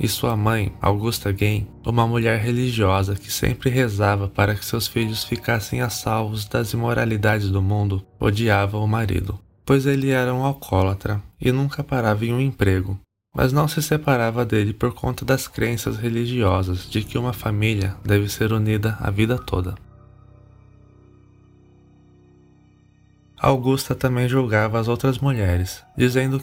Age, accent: 20-39, Brazilian